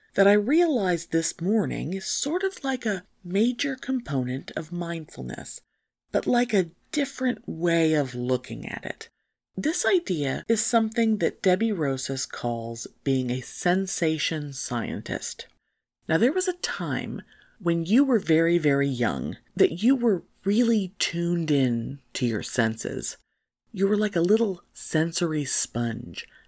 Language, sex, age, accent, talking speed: English, female, 50-69, American, 140 wpm